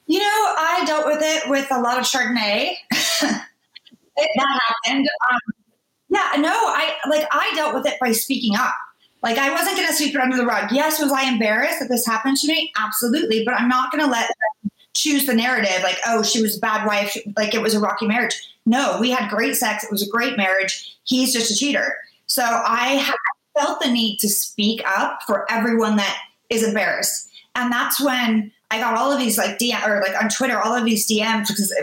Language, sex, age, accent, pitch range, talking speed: English, female, 30-49, American, 215-275 Hz, 220 wpm